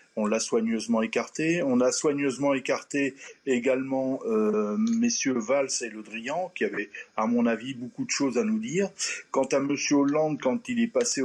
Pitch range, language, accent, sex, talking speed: 115-190 Hz, French, French, male, 180 wpm